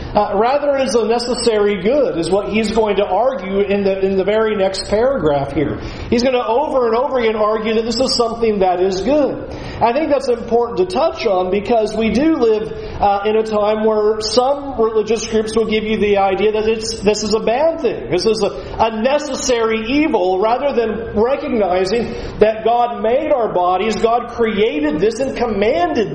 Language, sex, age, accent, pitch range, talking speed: English, male, 40-59, American, 210-255 Hz, 195 wpm